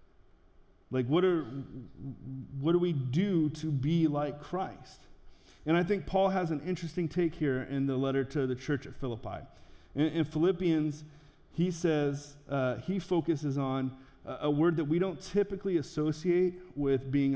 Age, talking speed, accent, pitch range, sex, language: 30-49, 165 wpm, American, 125-160 Hz, male, English